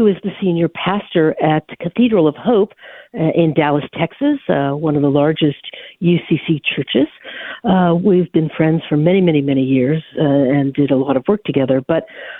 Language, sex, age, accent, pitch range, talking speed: English, female, 60-79, American, 155-220 Hz, 190 wpm